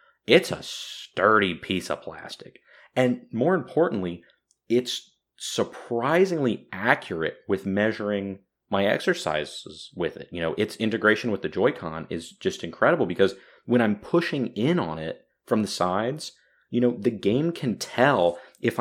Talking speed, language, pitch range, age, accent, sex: 145 wpm, English, 90-120 Hz, 30-49, American, male